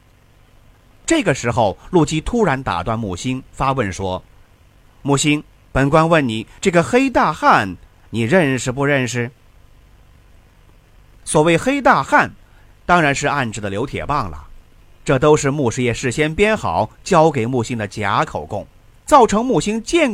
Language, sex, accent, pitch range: Chinese, male, native, 110-180 Hz